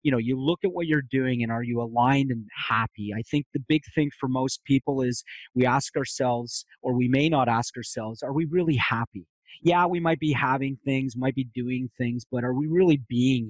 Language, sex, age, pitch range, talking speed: English, male, 30-49, 115-145 Hz, 225 wpm